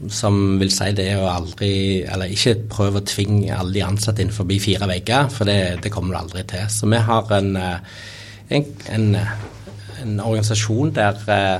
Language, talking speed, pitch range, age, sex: English, 170 wpm, 100-110 Hz, 30-49, male